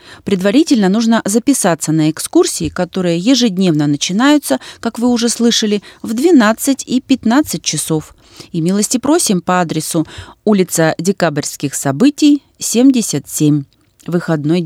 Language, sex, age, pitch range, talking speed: Russian, female, 30-49, 165-230 Hz, 110 wpm